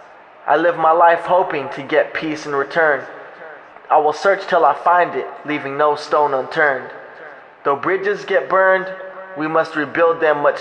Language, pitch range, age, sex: English, 145-180 Hz, 20-39, male